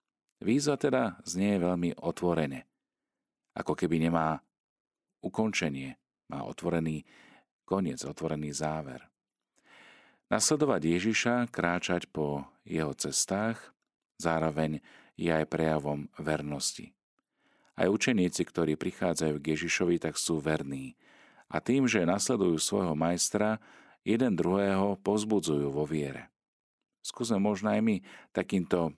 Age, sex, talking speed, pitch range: 40-59, male, 105 wpm, 75-100 Hz